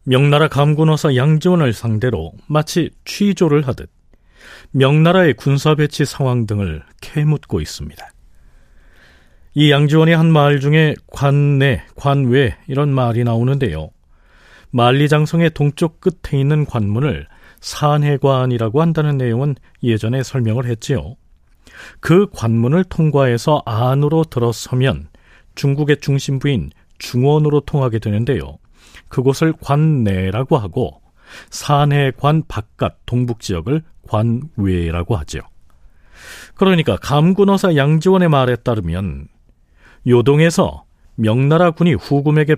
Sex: male